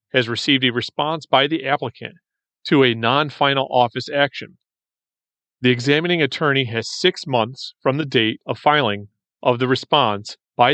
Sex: male